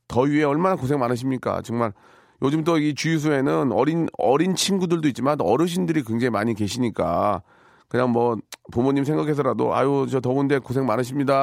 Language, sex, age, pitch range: Korean, male, 40-59, 115-150 Hz